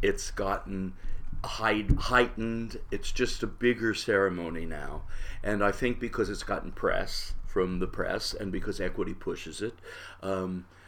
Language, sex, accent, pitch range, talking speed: English, male, American, 90-120 Hz, 140 wpm